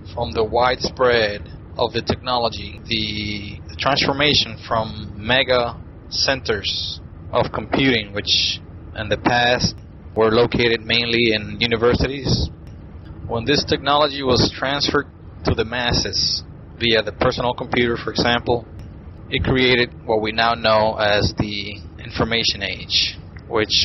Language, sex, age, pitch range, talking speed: English, male, 20-39, 100-120 Hz, 120 wpm